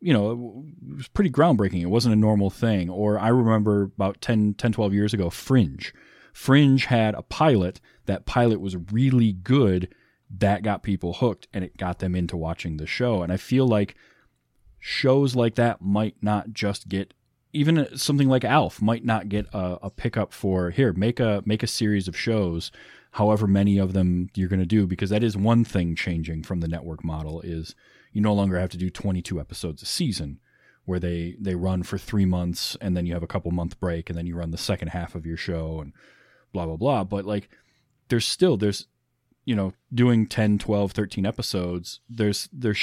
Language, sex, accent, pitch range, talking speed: English, male, American, 90-115 Hz, 200 wpm